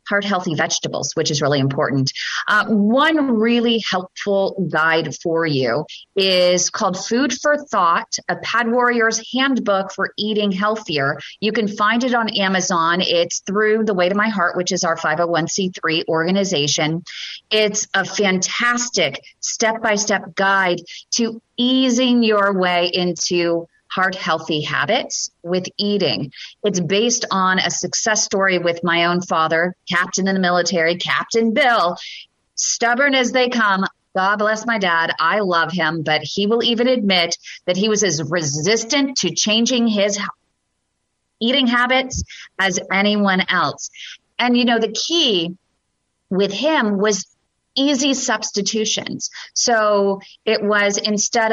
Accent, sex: American, female